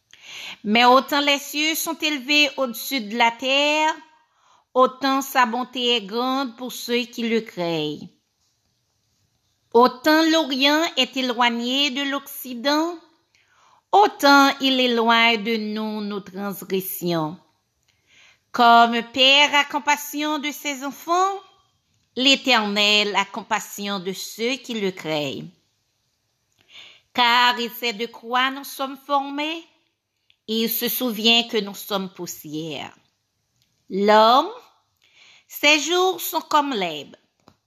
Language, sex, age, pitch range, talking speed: French, female, 50-69, 205-285 Hz, 110 wpm